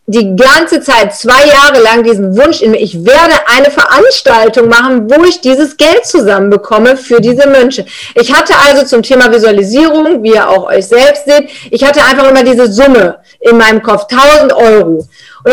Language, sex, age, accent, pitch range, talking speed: German, female, 40-59, German, 225-290 Hz, 180 wpm